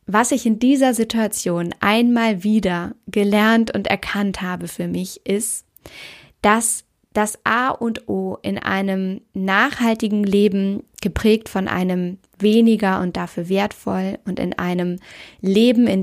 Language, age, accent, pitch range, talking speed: German, 20-39, German, 195-230 Hz, 130 wpm